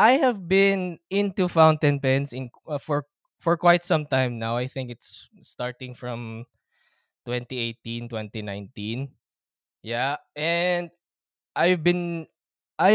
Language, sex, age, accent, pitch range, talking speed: Filipino, male, 20-39, native, 135-190 Hz, 130 wpm